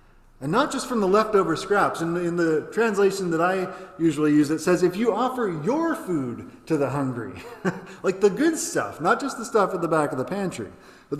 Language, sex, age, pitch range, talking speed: English, male, 30-49, 145-205 Hz, 215 wpm